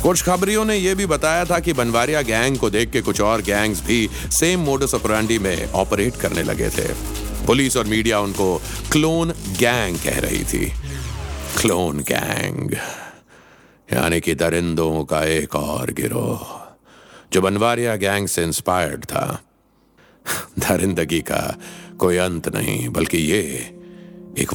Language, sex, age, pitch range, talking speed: Hindi, male, 60-79, 85-115 Hz, 140 wpm